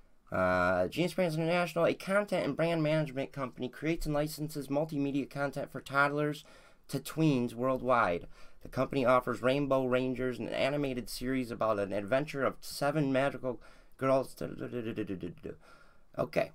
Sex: male